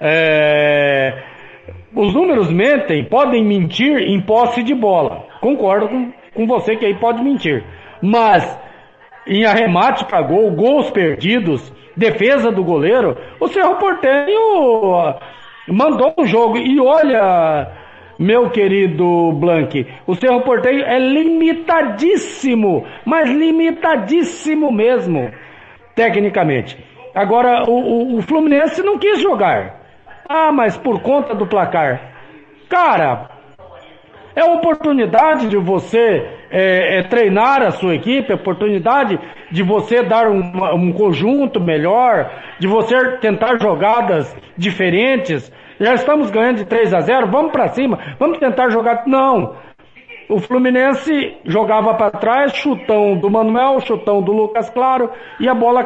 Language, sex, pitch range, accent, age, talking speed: Portuguese, male, 200-270 Hz, Brazilian, 60-79, 125 wpm